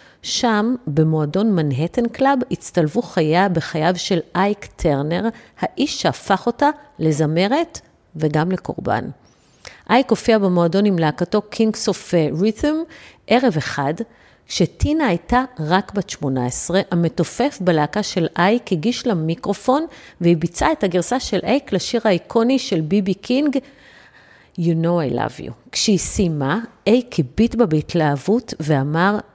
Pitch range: 165-230 Hz